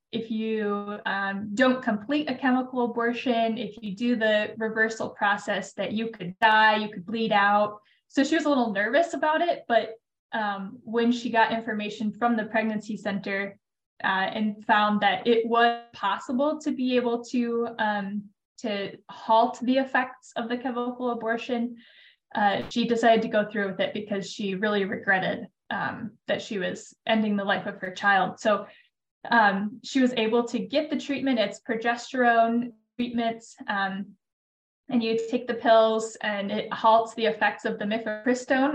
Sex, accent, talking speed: female, American, 165 wpm